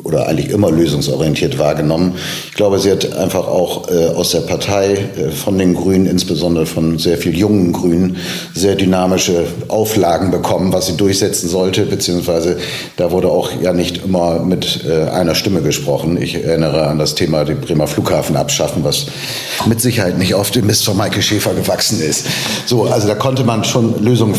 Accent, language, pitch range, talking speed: German, German, 85-115 Hz, 180 wpm